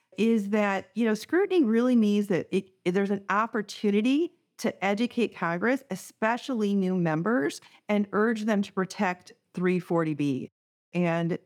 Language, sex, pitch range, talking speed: English, female, 180-225 Hz, 130 wpm